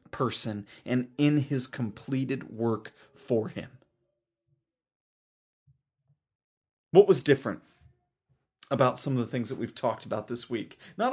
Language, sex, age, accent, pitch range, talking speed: English, male, 30-49, American, 125-165 Hz, 125 wpm